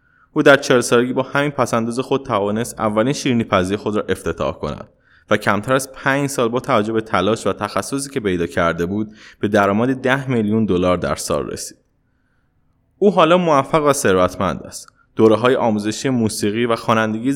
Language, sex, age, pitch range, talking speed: Persian, male, 20-39, 100-130 Hz, 170 wpm